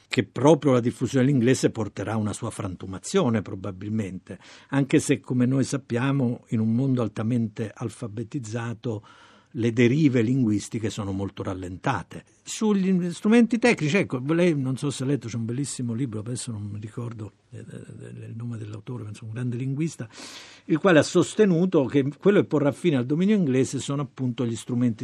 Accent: native